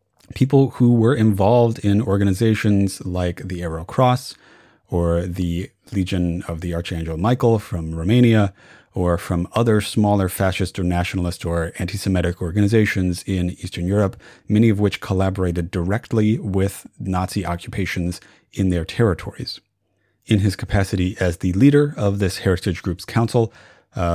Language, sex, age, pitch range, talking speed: English, male, 30-49, 90-110 Hz, 135 wpm